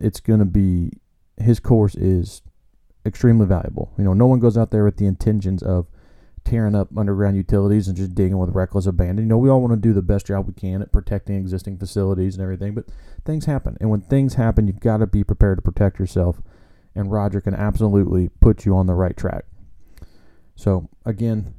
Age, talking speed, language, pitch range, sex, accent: 30-49, 210 wpm, English, 95-115 Hz, male, American